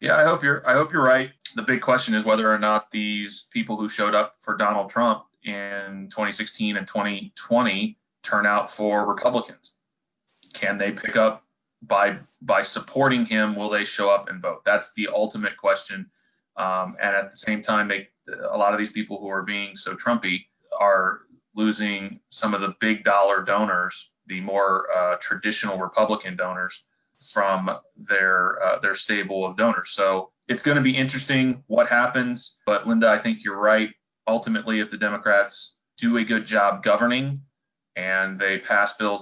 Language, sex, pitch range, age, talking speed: English, male, 100-115 Hz, 20-39, 170 wpm